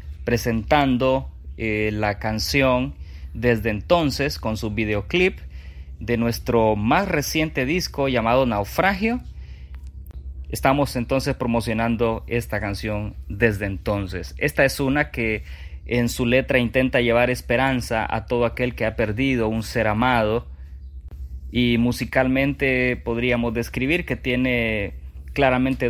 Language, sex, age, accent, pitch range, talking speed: Spanish, male, 30-49, Mexican, 105-130 Hz, 115 wpm